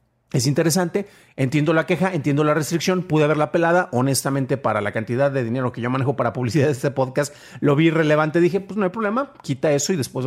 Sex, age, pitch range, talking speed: male, 40-59, 130-175 Hz, 215 wpm